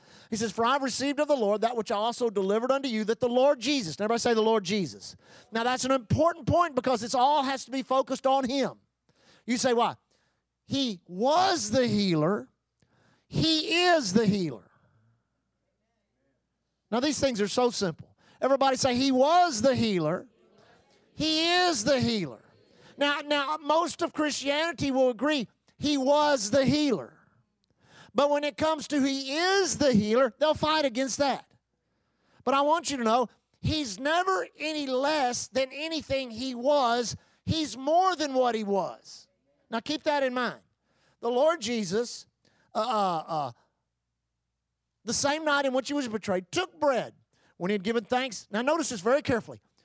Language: English